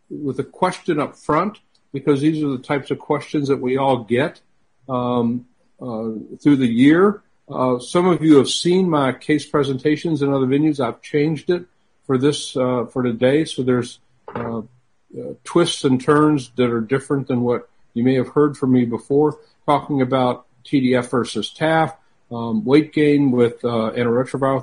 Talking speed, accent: 175 wpm, American